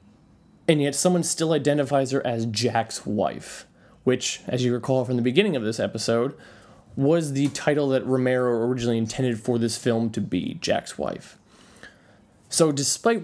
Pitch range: 120-145 Hz